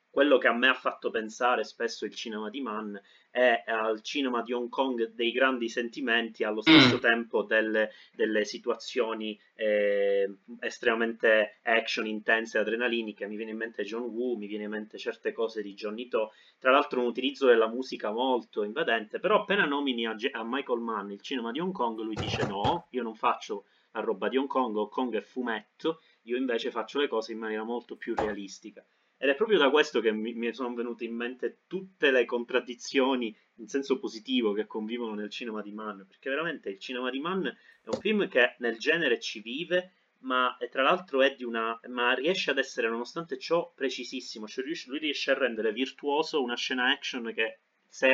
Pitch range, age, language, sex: 110-130 Hz, 30-49, Italian, male